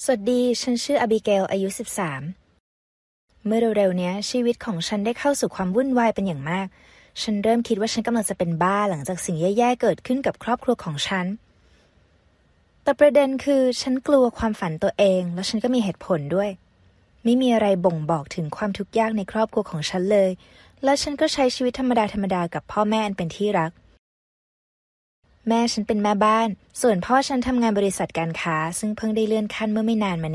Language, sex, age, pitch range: Thai, female, 20-39, 180-235 Hz